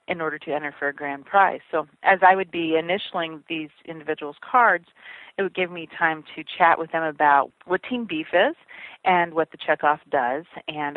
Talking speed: 200 wpm